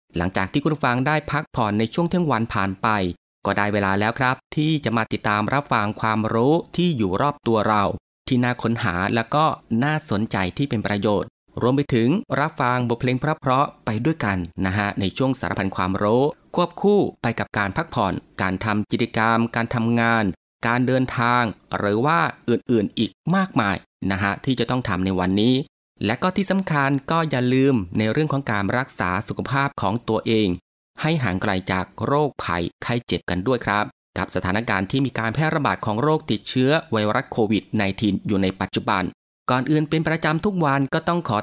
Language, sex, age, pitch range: Thai, male, 20-39, 100-140 Hz